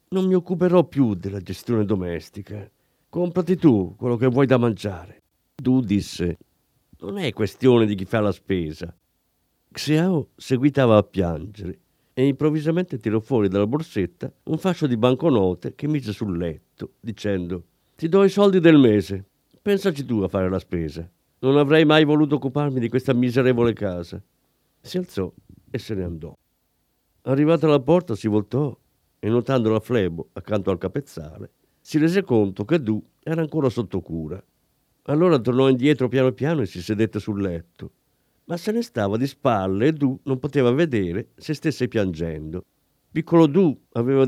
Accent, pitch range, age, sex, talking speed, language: native, 95-145 Hz, 50-69, male, 160 wpm, Italian